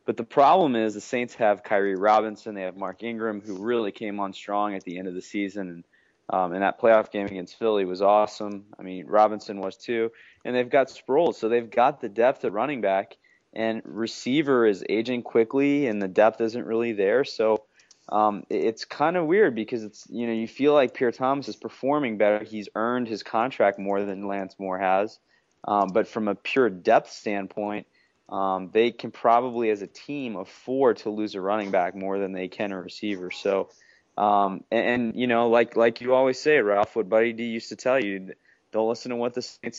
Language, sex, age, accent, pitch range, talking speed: English, male, 20-39, American, 100-115 Hz, 210 wpm